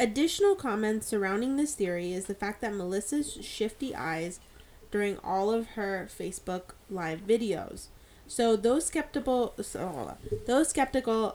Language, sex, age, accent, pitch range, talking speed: English, female, 10-29, American, 190-235 Hz, 125 wpm